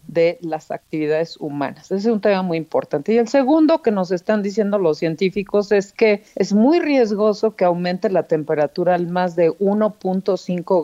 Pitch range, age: 160-210 Hz, 40-59